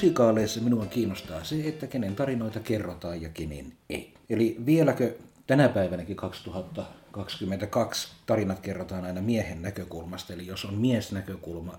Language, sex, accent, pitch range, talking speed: Finnish, male, native, 80-95 Hz, 130 wpm